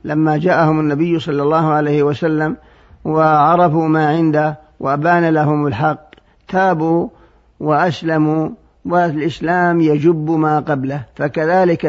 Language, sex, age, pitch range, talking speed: Arabic, male, 50-69, 145-170 Hz, 100 wpm